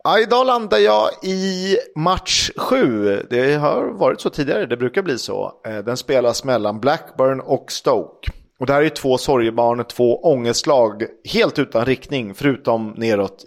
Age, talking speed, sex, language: 30-49, 155 wpm, male, Swedish